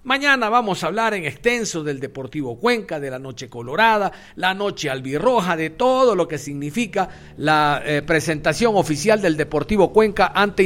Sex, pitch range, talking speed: male, 150-200 Hz, 165 wpm